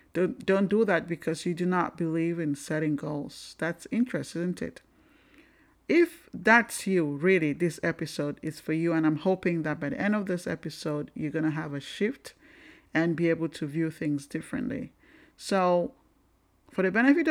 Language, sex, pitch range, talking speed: English, male, 155-195 Hz, 180 wpm